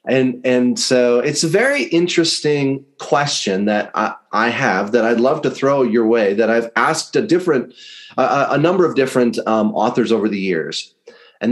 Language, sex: English, male